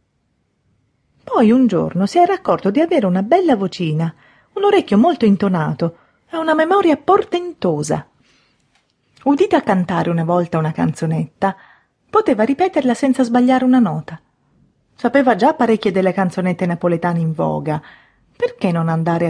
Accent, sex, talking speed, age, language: native, female, 130 wpm, 30-49, Italian